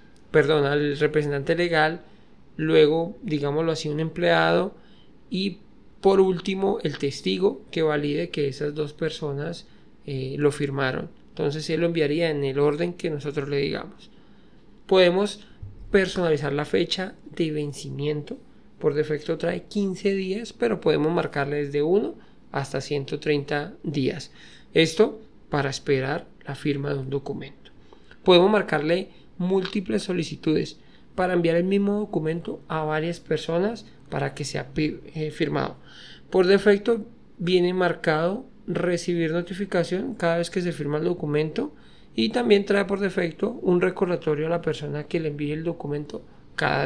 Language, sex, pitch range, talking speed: Spanish, male, 150-190 Hz, 135 wpm